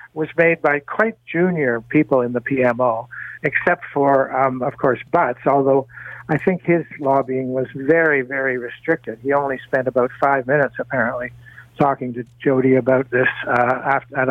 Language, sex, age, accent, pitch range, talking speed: English, male, 60-79, American, 130-160 Hz, 160 wpm